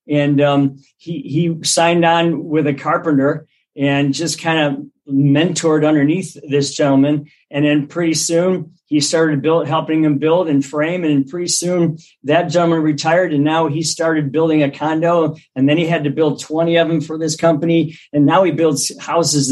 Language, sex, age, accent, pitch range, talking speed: English, male, 50-69, American, 140-165 Hz, 180 wpm